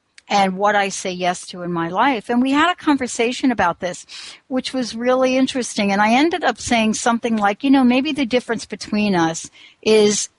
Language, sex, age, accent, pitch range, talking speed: English, female, 60-79, American, 195-260 Hz, 200 wpm